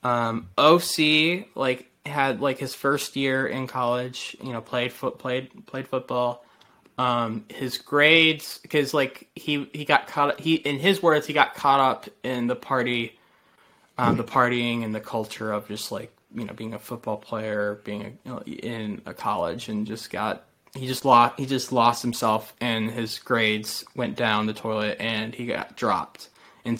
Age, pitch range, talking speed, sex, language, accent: 20-39, 110-135 Hz, 180 wpm, male, English, American